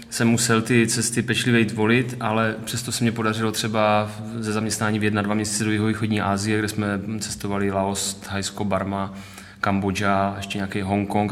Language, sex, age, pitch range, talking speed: Czech, male, 20-39, 105-115 Hz, 165 wpm